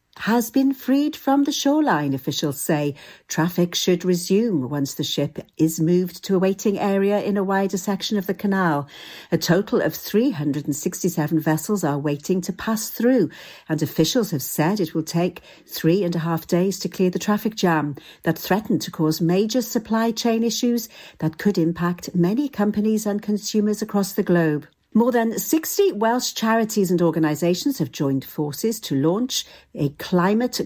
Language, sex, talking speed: English, female, 170 wpm